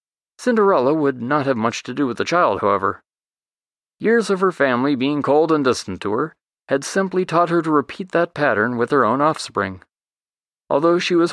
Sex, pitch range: male, 130-190 Hz